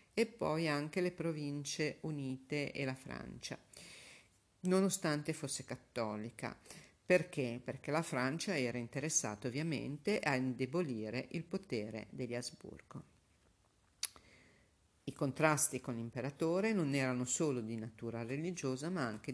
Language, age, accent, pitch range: Italian, 50-69, native, 120-160 Hz